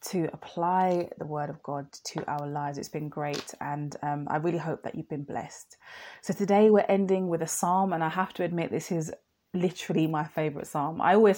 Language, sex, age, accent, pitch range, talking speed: English, female, 20-39, British, 155-195 Hz, 215 wpm